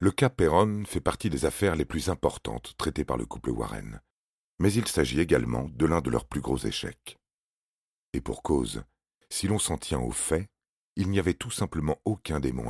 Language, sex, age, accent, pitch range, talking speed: French, male, 40-59, French, 65-85 Hz, 200 wpm